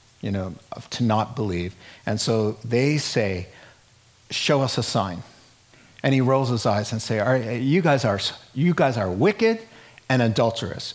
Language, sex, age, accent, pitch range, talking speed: English, male, 50-69, American, 115-150 Hz, 150 wpm